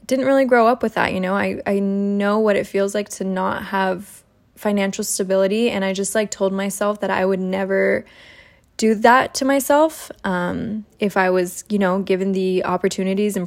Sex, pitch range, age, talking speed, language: female, 190-225 Hz, 10-29, 195 wpm, English